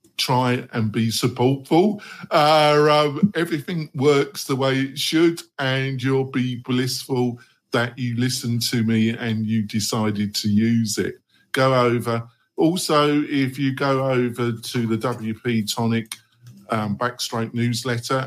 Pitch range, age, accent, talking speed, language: 115-140 Hz, 50-69, British, 135 wpm, English